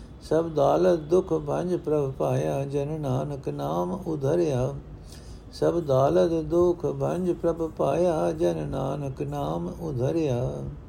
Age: 60-79